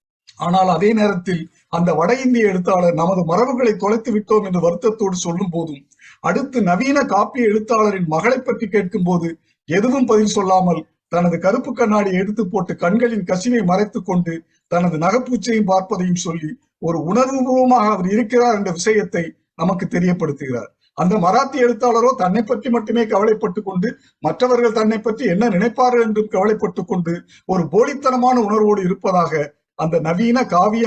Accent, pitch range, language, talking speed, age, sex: native, 175-235 Hz, Tamil, 130 wpm, 50-69, male